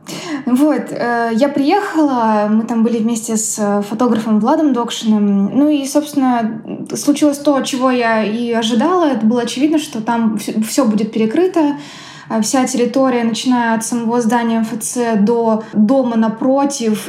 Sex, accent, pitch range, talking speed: female, native, 220-275 Hz, 135 wpm